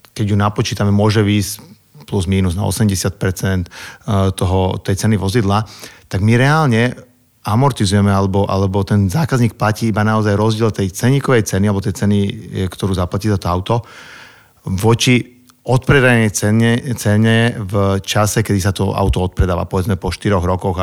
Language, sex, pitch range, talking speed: Slovak, male, 95-115 Hz, 145 wpm